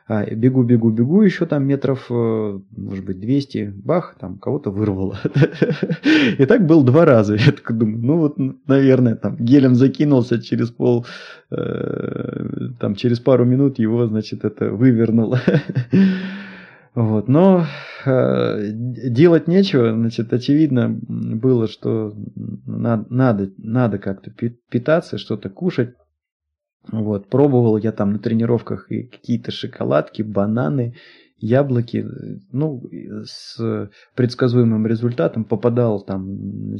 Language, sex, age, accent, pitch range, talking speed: Russian, male, 20-39, native, 105-135 Hz, 115 wpm